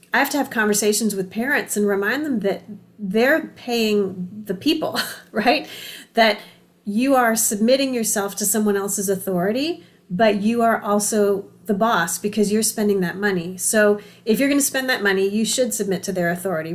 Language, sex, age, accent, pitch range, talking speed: English, female, 30-49, American, 200-230 Hz, 170 wpm